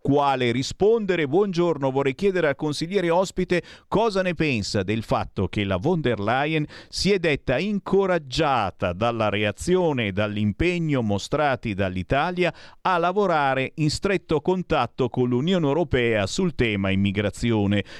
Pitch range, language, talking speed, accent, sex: 105-155 Hz, Italian, 130 wpm, native, male